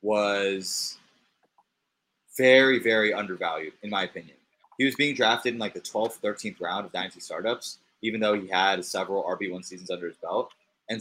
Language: English